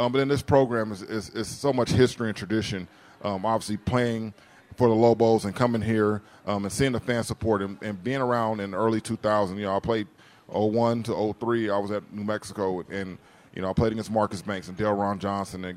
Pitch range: 100-120 Hz